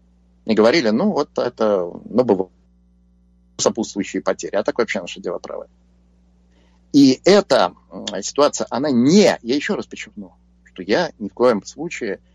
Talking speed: 145 wpm